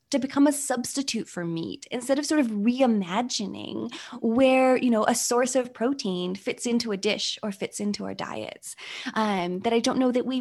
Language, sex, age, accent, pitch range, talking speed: English, female, 10-29, American, 200-260 Hz, 195 wpm